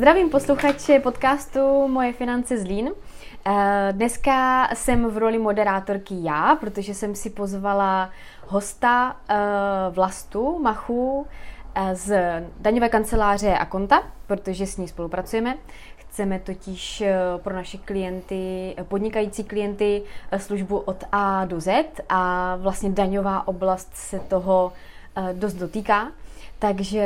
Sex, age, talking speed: female, 20-39, 110 wpm